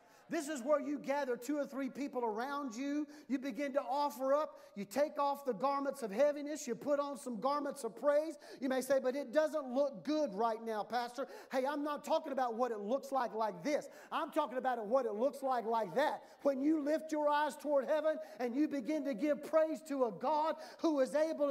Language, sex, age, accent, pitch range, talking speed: English, male, 40-59, American, 270-320 Hz, 225 wpm